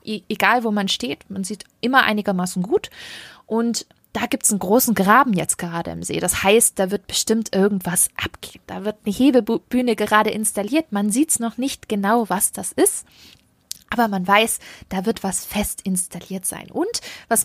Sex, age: female, 20-39